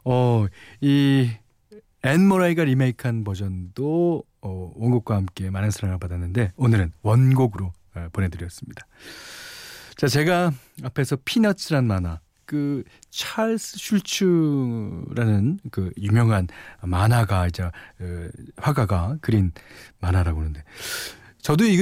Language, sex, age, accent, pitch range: Korean, male, 40-59, native, 95-160 Hz